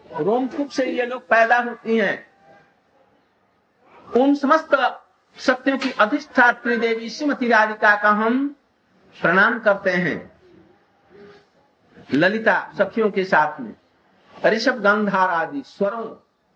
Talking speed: 90 wpm